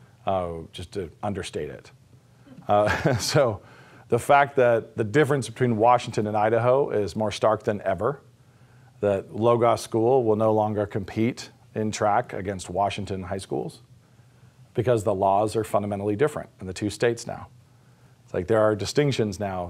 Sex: male